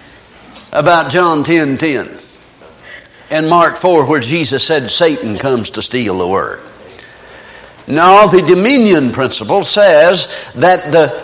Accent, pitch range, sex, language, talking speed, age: American, 180-230 Hz, male, English, 115 wpm, 60-79